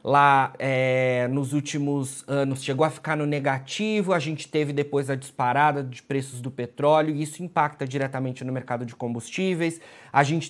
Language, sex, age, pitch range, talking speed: Portuguese, male, 30-49, 135-160 Hz, 170 wpm